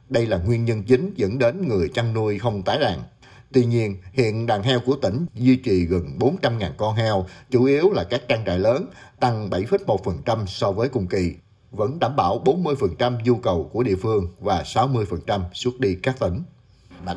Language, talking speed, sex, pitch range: Vietnamese, 190 wpm, male, 95-130 Hz